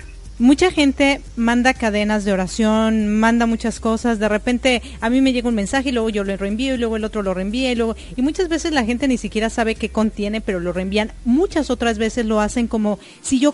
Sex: female